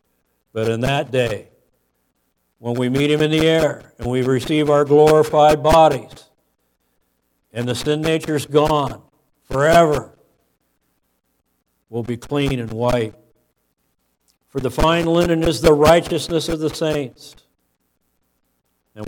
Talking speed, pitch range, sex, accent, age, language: 125 wpm, 115-155 Hz, male, American, 60-79, English